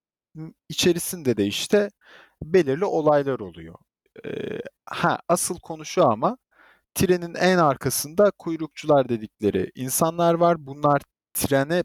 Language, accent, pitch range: Turkish, native, 105-160 Hz